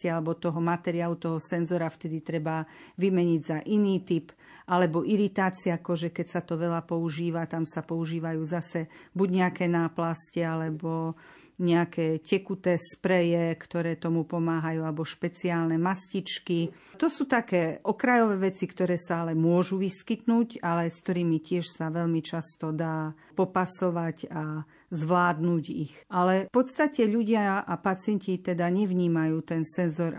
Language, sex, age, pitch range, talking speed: Slovak, female, 40-59, 165-185 Hz, 135 wpm